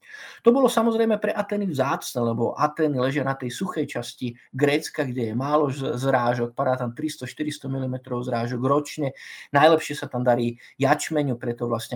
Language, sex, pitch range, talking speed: Slovak, male, 125-170 Hz, 160 wpm